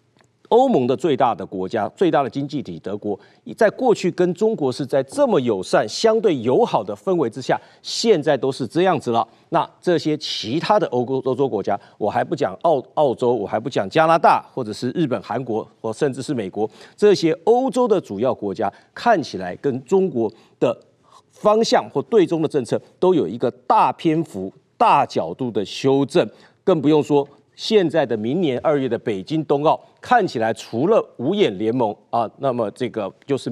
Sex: male